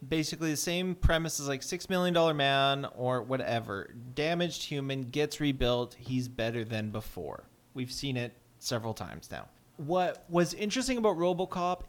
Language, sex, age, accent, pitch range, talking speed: English, male, 30-49, American, 125-160 Hz, 150 wpm